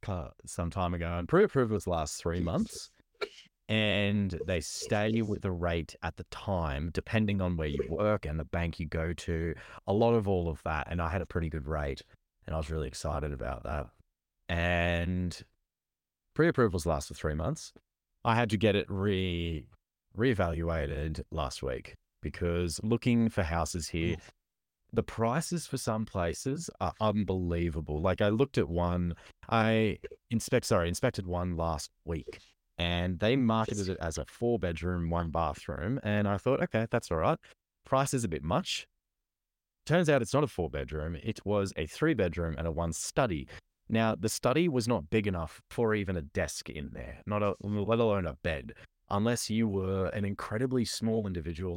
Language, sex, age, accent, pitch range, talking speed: English, male, 30-49, Australian, 85-110 Hz, 175 wpm